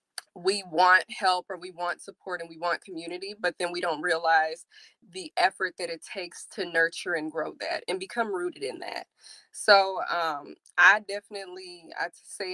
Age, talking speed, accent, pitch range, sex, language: 20-39, 175 wpm, American, 170-190 Hz, female, English